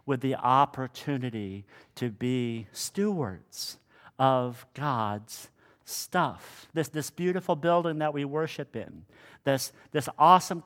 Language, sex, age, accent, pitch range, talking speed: English, male, 50-69, American, 125-170 Hz, 115 wpm